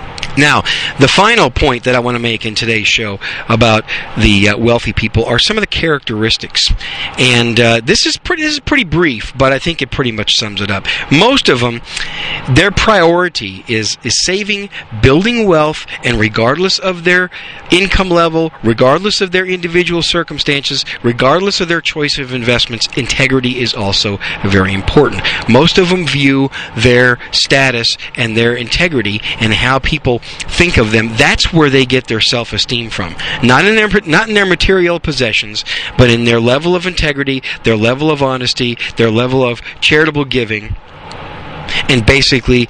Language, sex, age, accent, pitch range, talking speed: English, male, 40-59, American, 115-150 Hz, 165 wpm